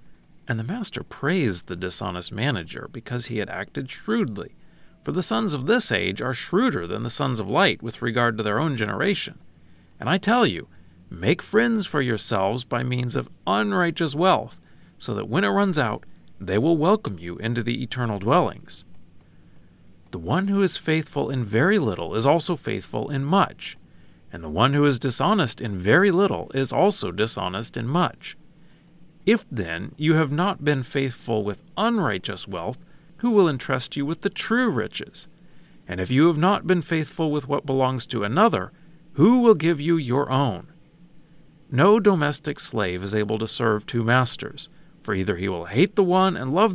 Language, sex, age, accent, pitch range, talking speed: English, male, 40-59, American, 105-170 Hz, 180 wpm